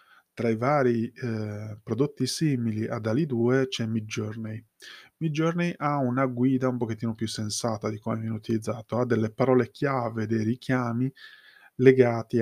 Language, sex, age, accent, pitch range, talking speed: Italian, male, 20-39, native, 110-130 Hz, 145 wpm